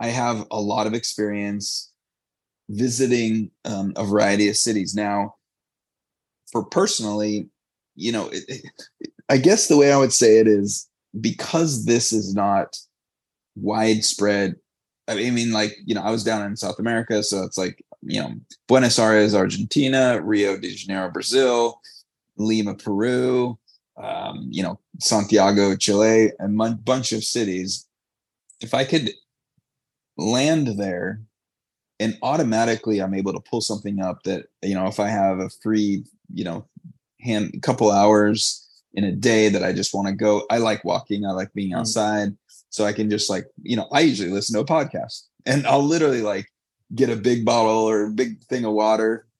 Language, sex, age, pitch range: English, male, 20-39, 100-120 Hz